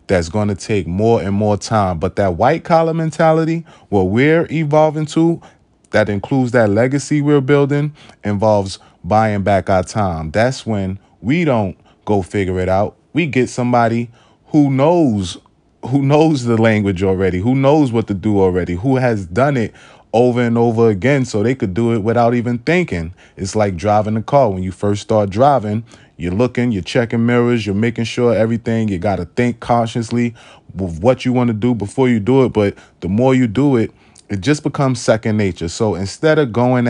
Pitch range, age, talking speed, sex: 100-125 Hz, 20-39, 185 wpm, male